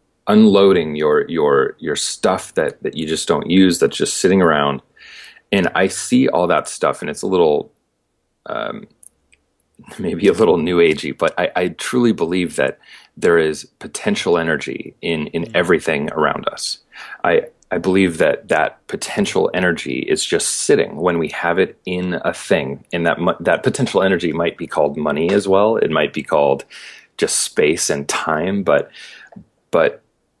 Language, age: English, 30-49